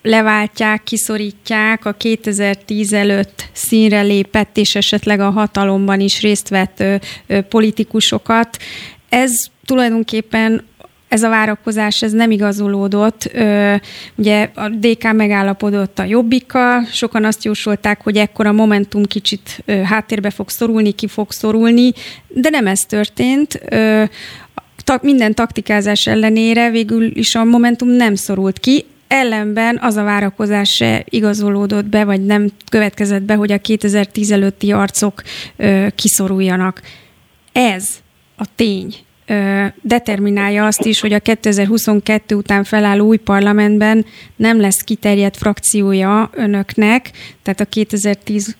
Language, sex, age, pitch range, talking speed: Hungarian, female, 30-49, 205-225 Hz, 125 wpm